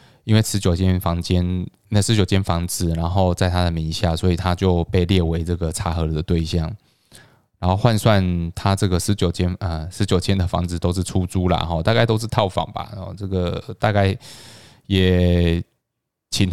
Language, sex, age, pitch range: Chinese, male, 20-39, 90-110 Hz